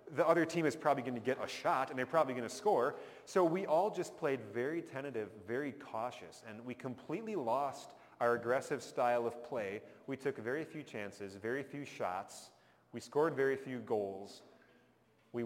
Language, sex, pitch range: English, male, 120-155 Hz